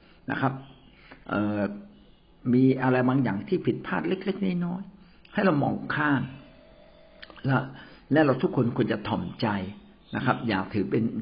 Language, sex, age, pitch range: Thai, male, 60-79, 105-135 Hz